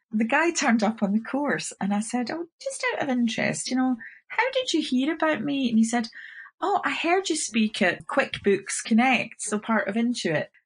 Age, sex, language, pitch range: 30-49, female, English, 195-265 Hz